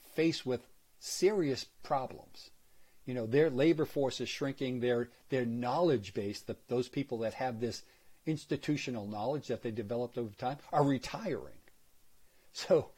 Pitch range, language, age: 115-140 Hz, English, 50-69